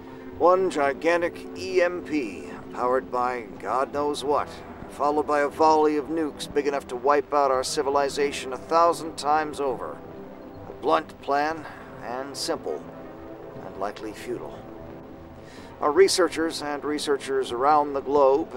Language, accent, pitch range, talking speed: English, American, 105-150 Hz, 130 wpm